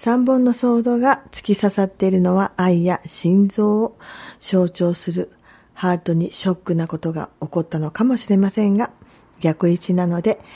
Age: 40-59